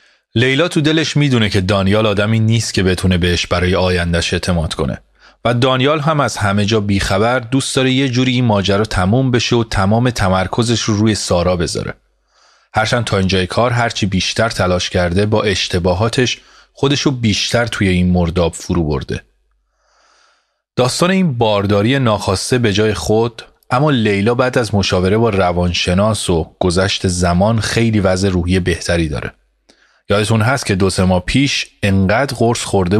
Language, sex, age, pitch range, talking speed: Persian, male, 30-49, 90-120 Hz, 155 wpm